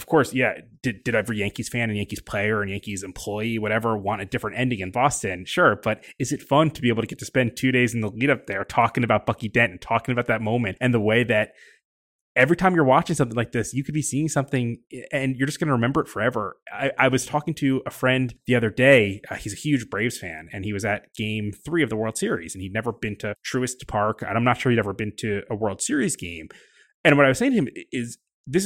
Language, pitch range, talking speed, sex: English, 110-135 Hz, 265 wpm, male